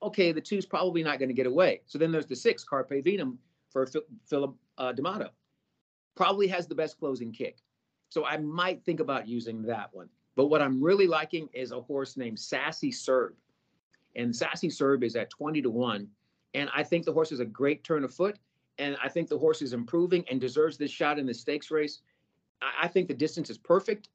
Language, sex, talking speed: English, male, 210 wpm